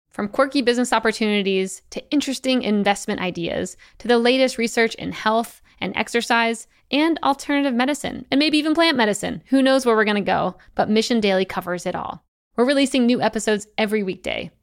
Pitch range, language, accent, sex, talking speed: 195-250 Hz, English, American, female, 175 wpm